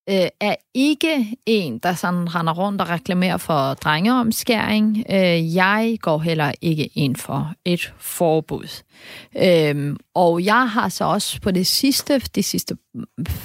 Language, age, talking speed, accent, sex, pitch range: Danish, 30-49, 125 wpm, native, female, 175-230 Hz